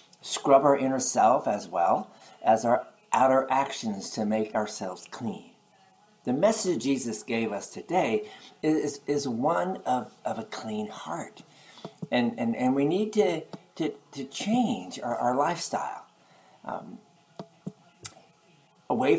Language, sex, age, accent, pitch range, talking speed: English, male, 50-69, American, 120-185 Hz, 130 wpm